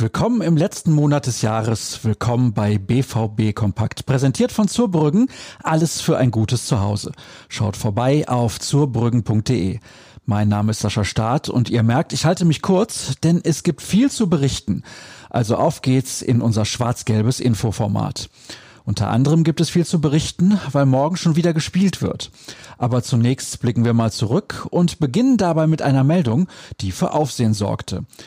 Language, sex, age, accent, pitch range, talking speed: German, male, 40-59, German, 115-165 Hz, 160 wpm